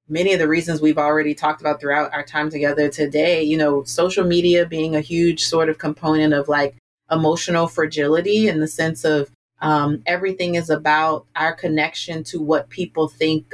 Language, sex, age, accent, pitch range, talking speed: English, female, 30-49, American, 150-165 Hz, 180 wpm